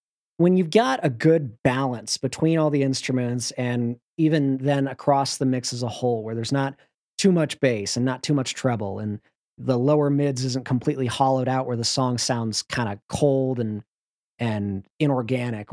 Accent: American